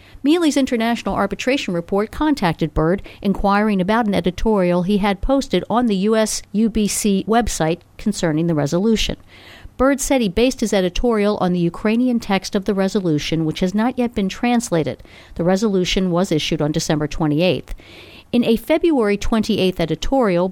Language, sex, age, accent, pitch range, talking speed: English, female, 50-69, American, 170-225 Hz, 150 wpm